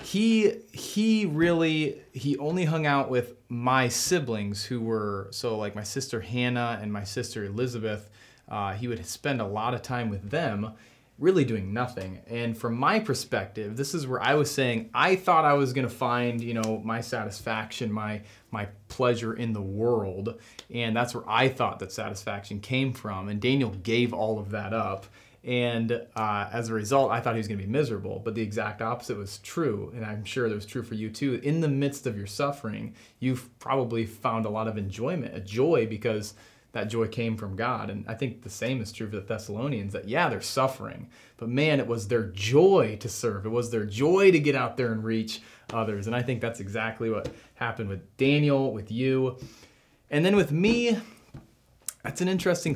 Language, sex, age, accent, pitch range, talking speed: English, male, 30-49, American, 110-135 Hz, 200 wpm